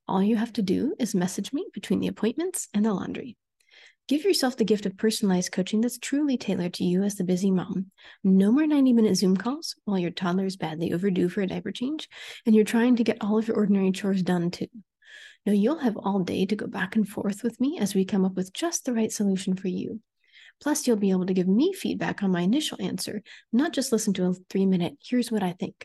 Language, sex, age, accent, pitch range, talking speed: English, female, 30-49, American, 195-240 Hz, 235 wpm